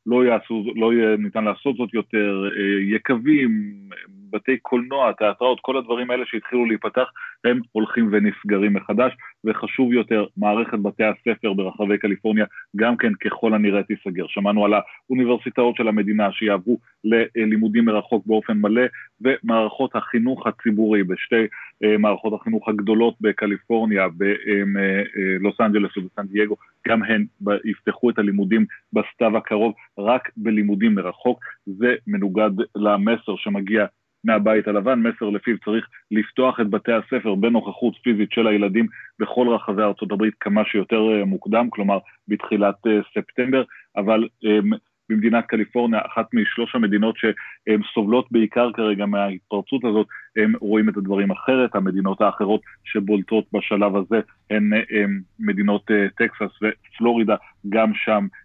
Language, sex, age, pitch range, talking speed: Hebrew, male, 30-49, 105-115 Hz, 125 wpm